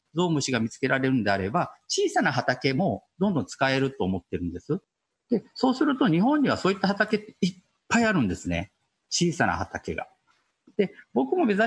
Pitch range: 165-250 Hz